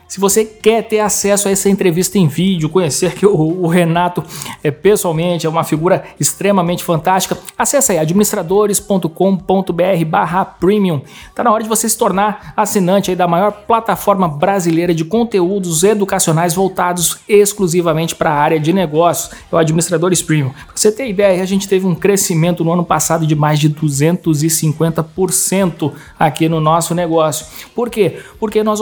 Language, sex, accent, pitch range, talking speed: Portuguese, male, Brazilian, 160-195 Hz, 160 wpm